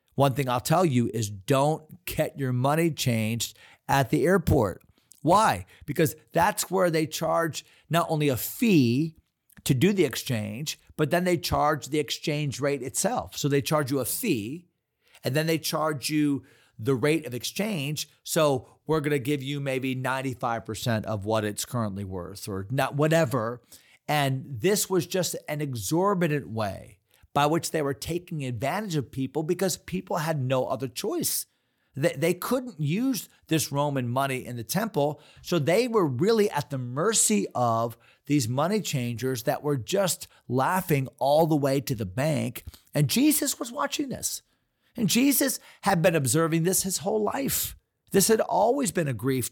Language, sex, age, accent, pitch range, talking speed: English, male, 40-59, American, 125-170 Hz, 170 wpm